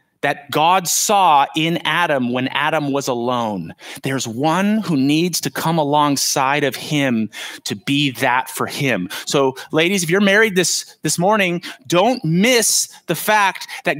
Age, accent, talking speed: 30-49, American, 155 wpm